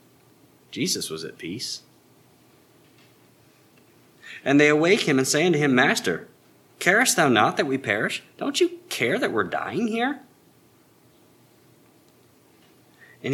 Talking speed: 120 wpm